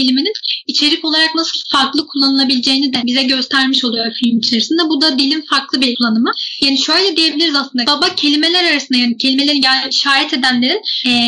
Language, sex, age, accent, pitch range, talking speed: Turkish, female, 10-29, native, 265-310 Hz, 160 wpm